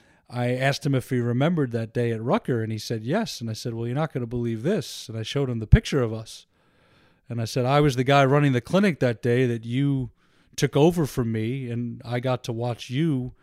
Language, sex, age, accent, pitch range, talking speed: English, male, 30-49, American, 115-140 Hz, 250 wpm